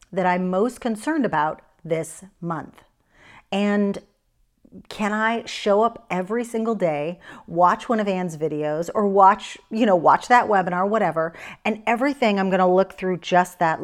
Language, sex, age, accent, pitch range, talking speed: English, female, 40-59, American, 180-230 Hz, 160 wpm